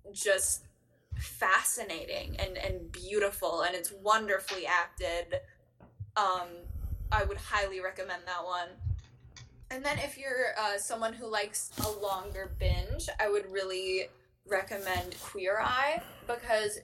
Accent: American